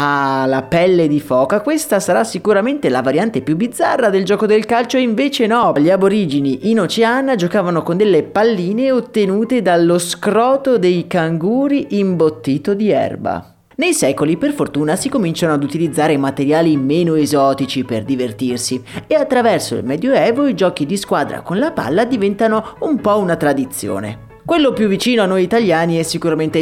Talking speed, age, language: 160 wpm, 30-49, Italian